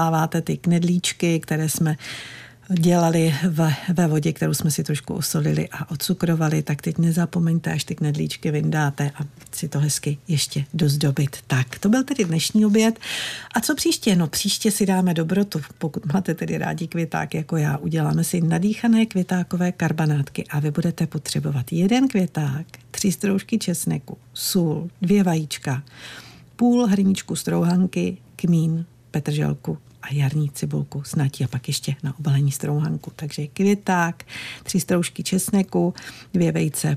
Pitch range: 150-185 Hz